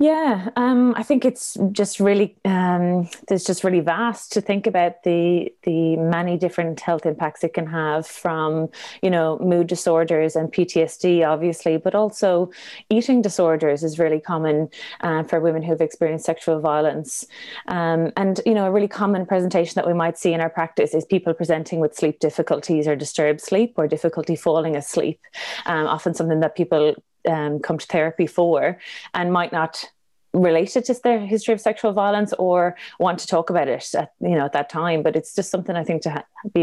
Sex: female